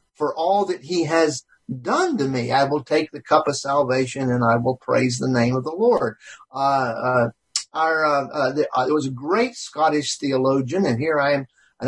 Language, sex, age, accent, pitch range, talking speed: English, male, 50-69, American, 130-170 Hz, 210 wpm